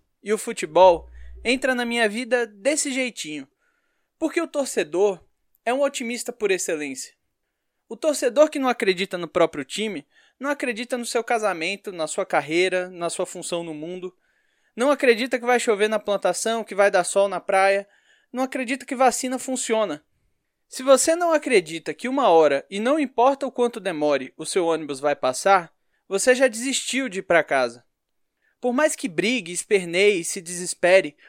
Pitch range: 185-255 Hz